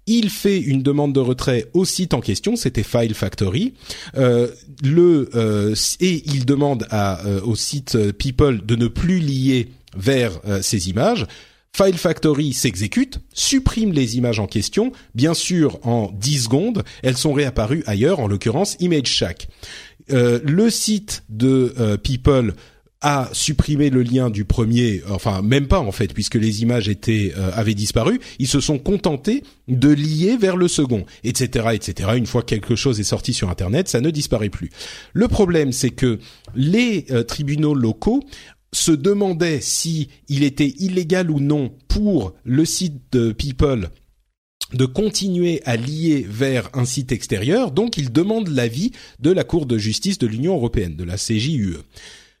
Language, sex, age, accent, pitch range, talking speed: French, male, 40-59, French, 115-155 Hz, 165 wpm